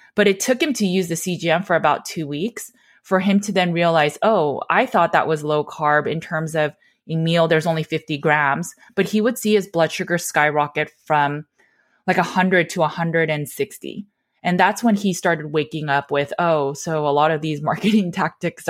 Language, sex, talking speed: English, female, 200 wpm